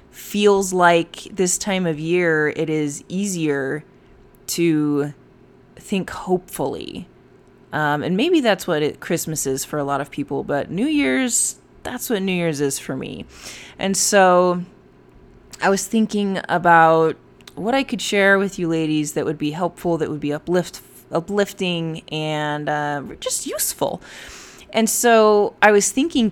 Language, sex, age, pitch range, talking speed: English, female, 20-39, 150-190 Hz, 150 wpm